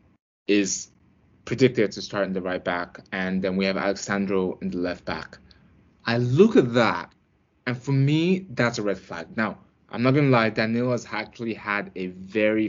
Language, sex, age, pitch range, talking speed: English, male, 20-39, 100-125 Hz, 190 wpm